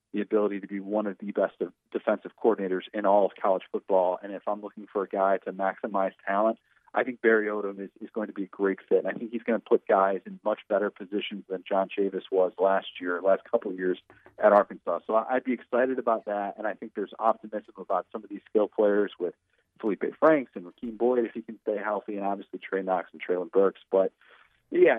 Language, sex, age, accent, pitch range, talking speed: English, male, 40-59, American, 95-120 Hz, 235 wpm